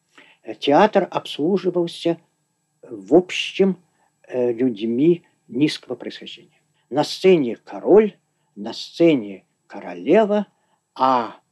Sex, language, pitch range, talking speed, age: male, Russian, 135-175 Hz, 75 wpm, 50-69